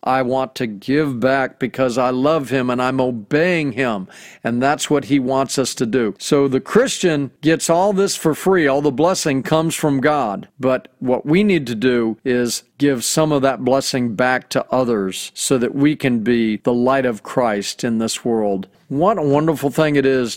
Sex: male